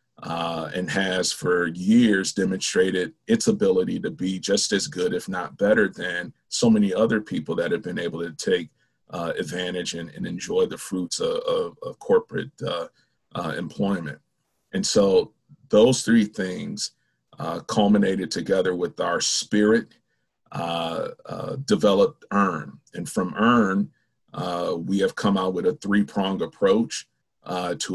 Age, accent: 40-59, American